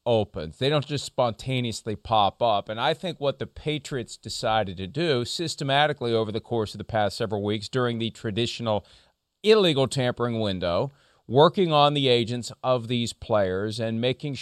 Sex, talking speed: male, 165 wpm